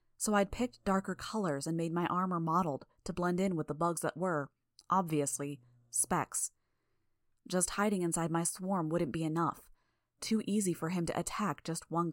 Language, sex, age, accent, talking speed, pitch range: English, female, 20-39, American, 180 wpm, 155-185 Hz